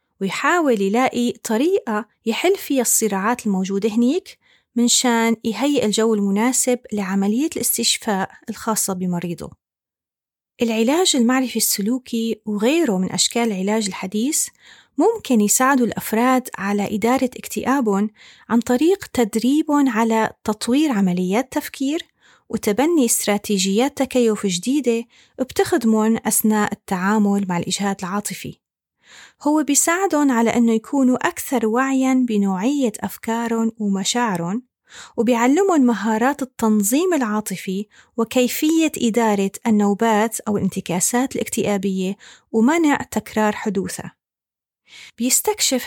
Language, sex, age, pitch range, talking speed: Arabic, female, 30-49, 210-260 Hz, 95 wpm